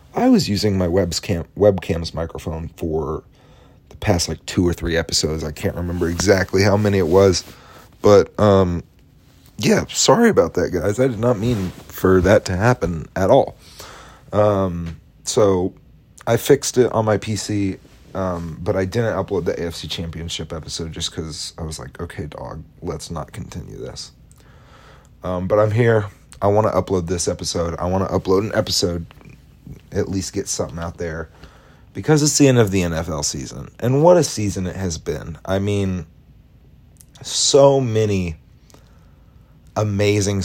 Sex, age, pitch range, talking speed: male, 30-49, 85-105 Hz, 160 wpm